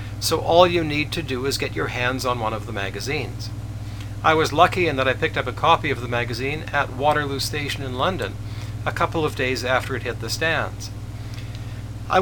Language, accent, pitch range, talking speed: English, American, 110-145 Hz, 210 wpm